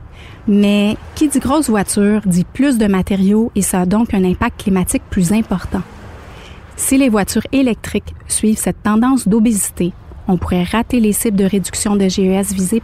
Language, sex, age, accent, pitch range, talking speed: French, female, 30-49, Canadian, 185-230 Hz, 170 wpm